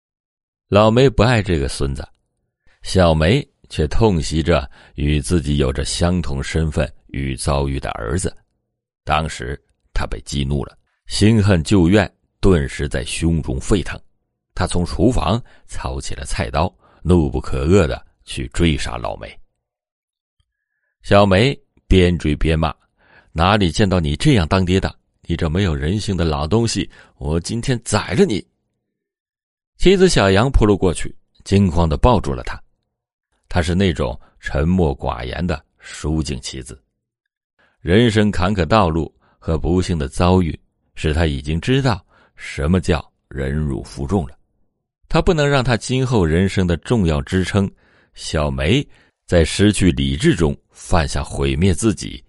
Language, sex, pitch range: Chinese, male, 75-100 Hz